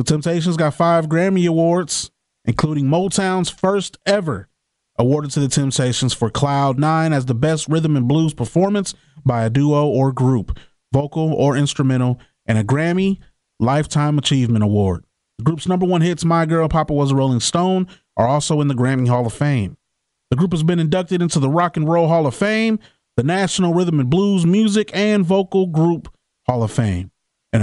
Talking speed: 180 wpm